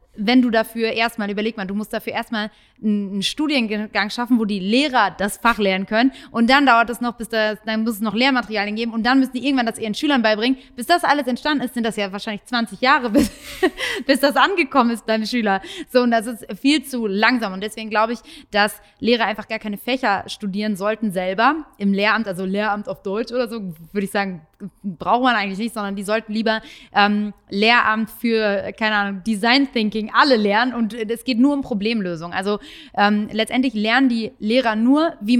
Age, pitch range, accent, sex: 20-39, 210-250 Hz, German, female